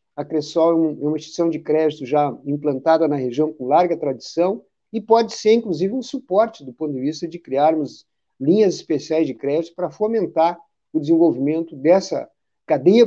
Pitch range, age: 145-180 Hz, 50-69